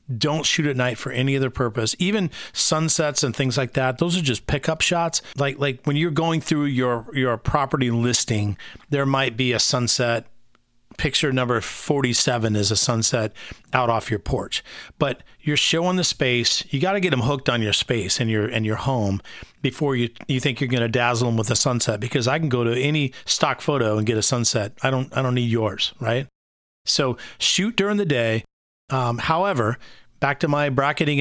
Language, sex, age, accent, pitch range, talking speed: English, male, 40-59, American, 115-145 Hz, 200 wpm